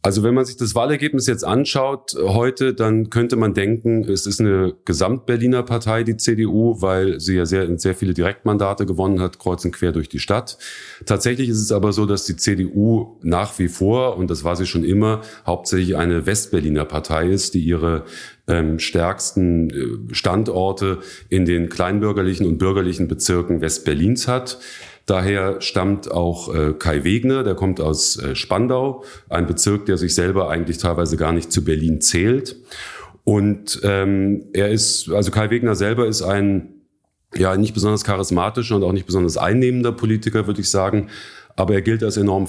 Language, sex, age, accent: German, male, 40-59, German